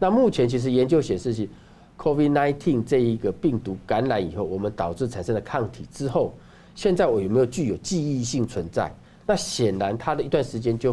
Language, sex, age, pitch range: Chinese, male, 50-69, 105-145 Hz